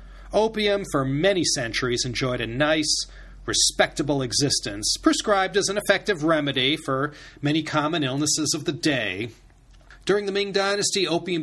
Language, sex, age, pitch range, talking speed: English, male, 40-59, 120-165 Hz, 135 wpm